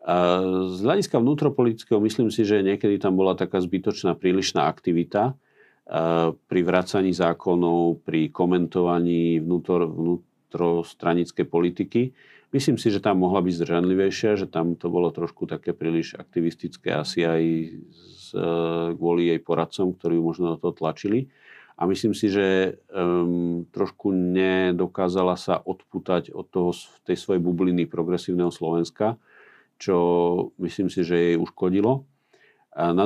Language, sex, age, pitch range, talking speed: Slovak, male, 40-59, 85-95 Hz, 130 wpm